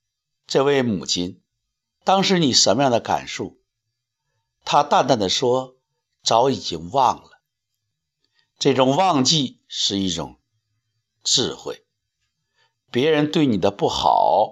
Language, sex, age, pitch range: Chinese, male, 60-79, 115-170 Hz